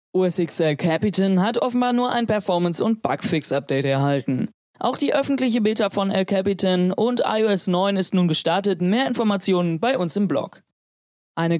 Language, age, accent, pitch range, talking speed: German, 20-39, German, 180-225 Hz, 155 wpm